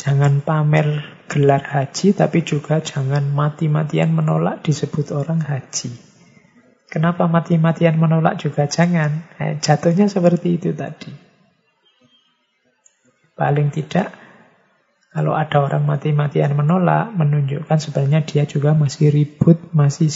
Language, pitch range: Indonesian, 140-170 Hz